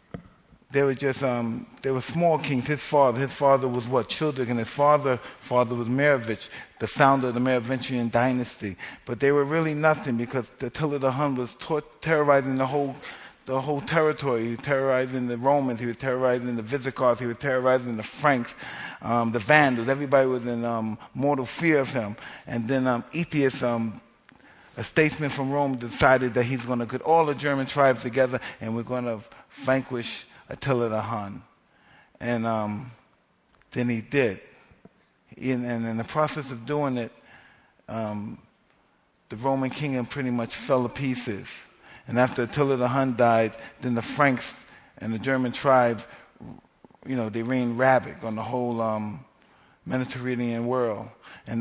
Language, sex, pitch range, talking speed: English, male, 120-140 Hz, 170 wpm